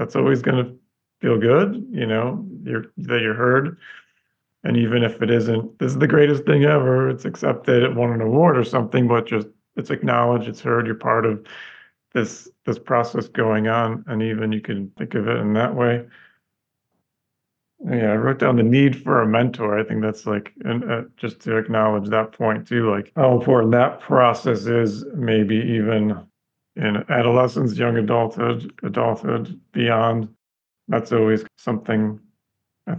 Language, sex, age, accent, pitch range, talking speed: English, male, 40-59, American, 110-125 Hz, 170 wpm